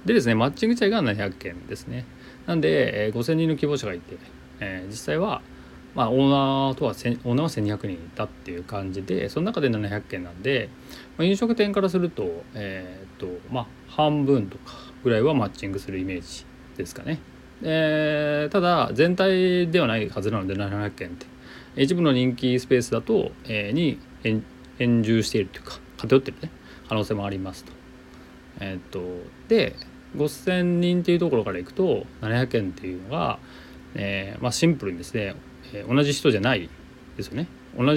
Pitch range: 90-135 Hz